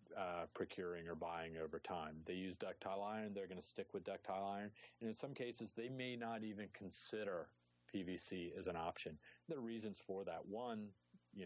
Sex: male